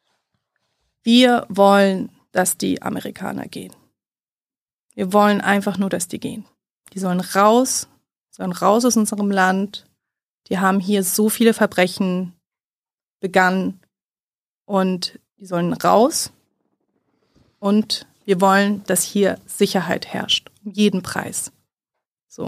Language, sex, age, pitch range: German, female, 30-49, 185-210 Hz